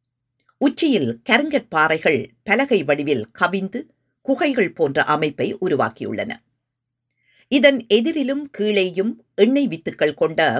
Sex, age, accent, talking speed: female, 50-69, native, 90 wpm